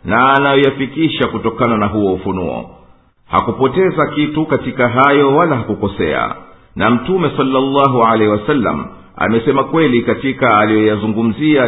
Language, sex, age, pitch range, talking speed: English, male, 50-69, 110-135 Hz, 110 wpm